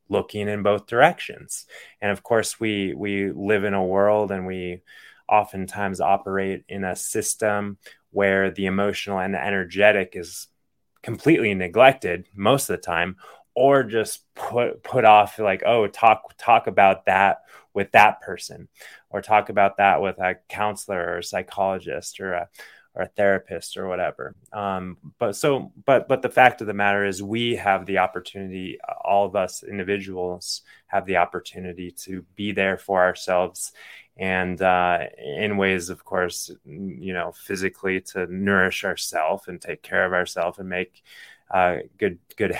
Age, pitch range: 20-39, 95-105 Hz